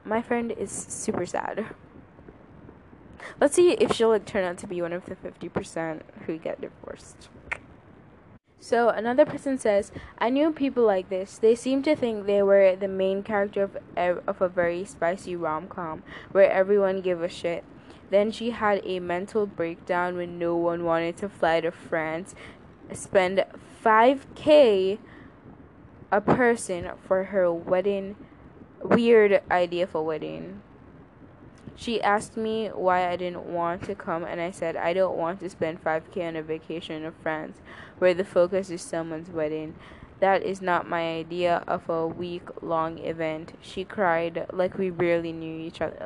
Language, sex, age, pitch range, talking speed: English, female, 10-29, 170-205 Hz, 160 wpm